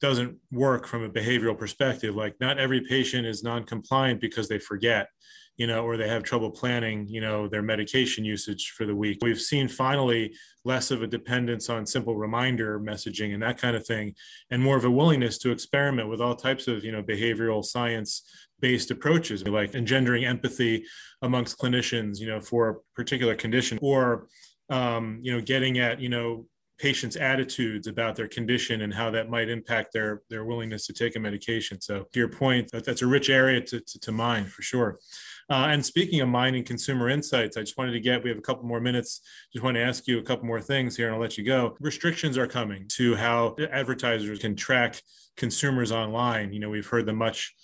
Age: 20-39